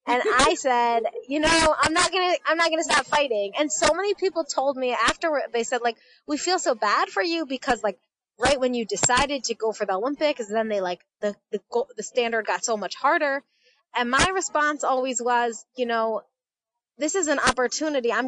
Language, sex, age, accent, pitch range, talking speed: English, female, 20-39, American, 235-290 Hz, 205 wpm